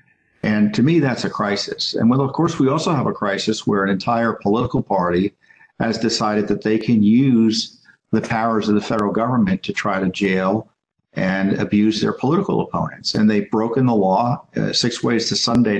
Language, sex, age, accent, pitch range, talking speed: English, male, 50-69, American, 105-125 Hz, 195 wpm